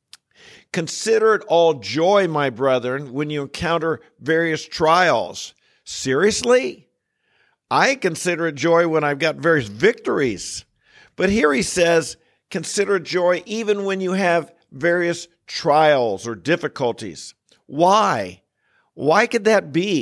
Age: 50-69